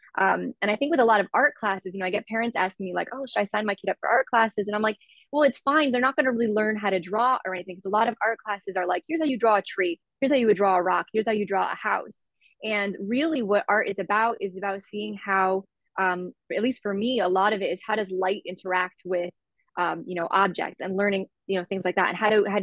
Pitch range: 185-220 Hz